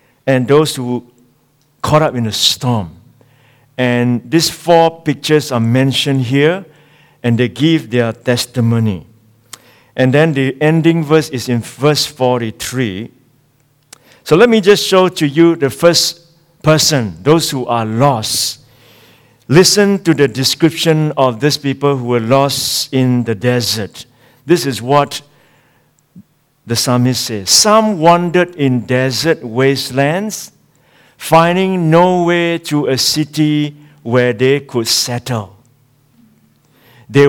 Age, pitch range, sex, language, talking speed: 60-79, 120-155 Hz, male, English, 125 wpm